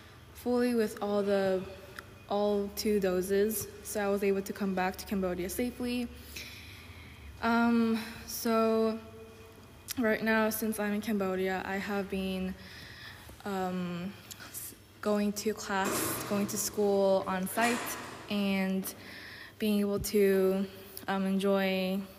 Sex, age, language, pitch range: female, 20-39, Korean, 190-215 Hz